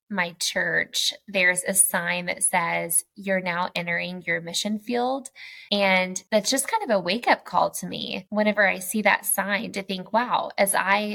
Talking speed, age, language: 185 wpm, 10-29, English